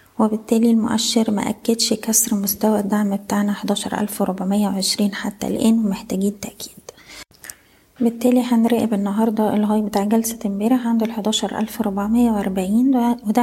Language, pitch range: Arabic, 200-225 Hz